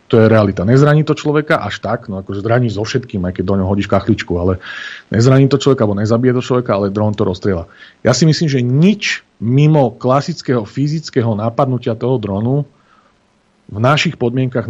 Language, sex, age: Slovak, male, 40-59